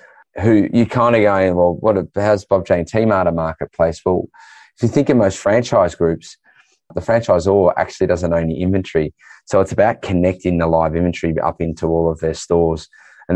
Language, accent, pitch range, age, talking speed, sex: English, Australian, 80-95 Hz, 20-39, 195 wpm, male